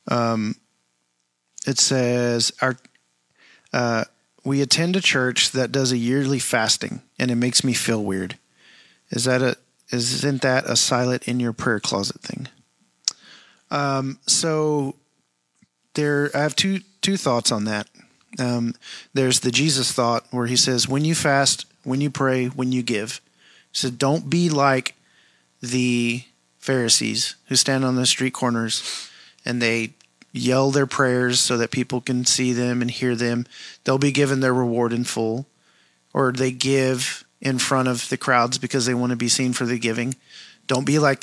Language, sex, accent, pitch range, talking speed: English, male, American, 120-135 Hz, 165 wpm